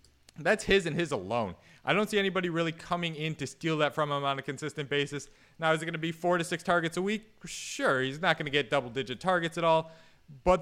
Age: 20-39